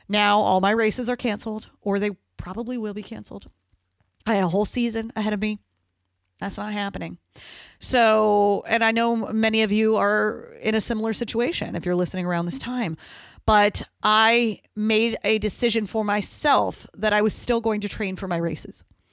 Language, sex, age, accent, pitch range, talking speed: English, female, 30-49, American, 185-225 Hz, 180 wpm